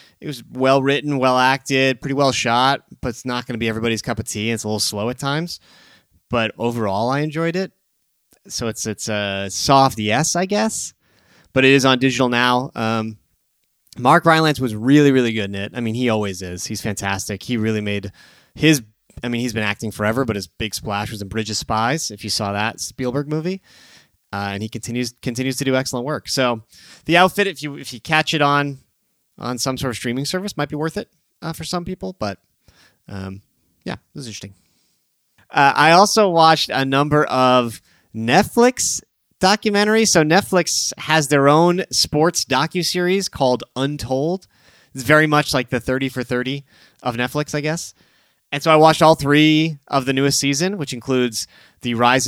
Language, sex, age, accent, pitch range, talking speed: English, male, 30-49, American, 110-150 Hz, 190 wpm